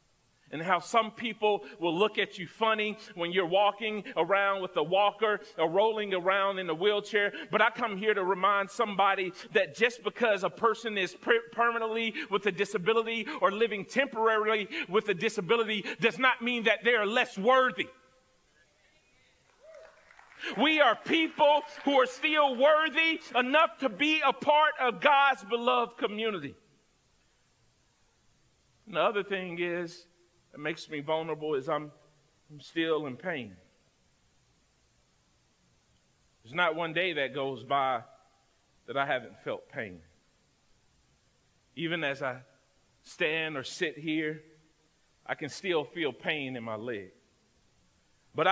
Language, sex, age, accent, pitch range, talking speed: English, male, 40-59, American, 170-230 Hz, 140 wpm